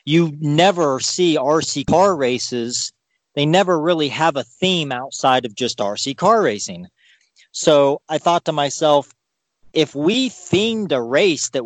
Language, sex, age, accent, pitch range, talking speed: English, male, 40-59, American, 125-160 Hz, 150 wpm